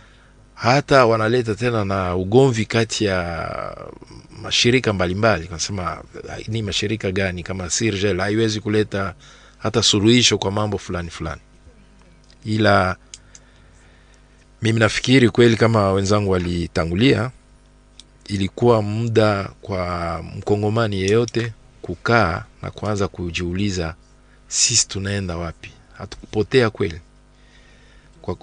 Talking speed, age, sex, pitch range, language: 95 wpm, 50-69, male, 90-115 Hz, French